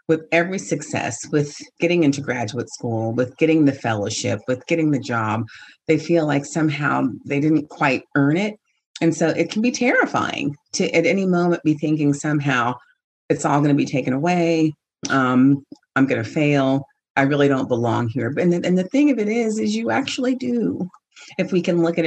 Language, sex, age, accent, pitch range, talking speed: English, female, 40-59, American, 140-175 Hz, 195 wpm